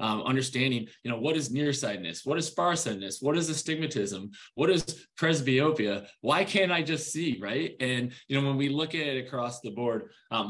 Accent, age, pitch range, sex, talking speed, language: American, 20-39, 115-145 Hz, male, 195 wpm, English